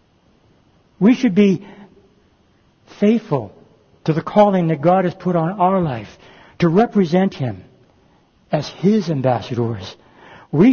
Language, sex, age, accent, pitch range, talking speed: English, male, 60-79, American, 130-170 Hz, 115 wpm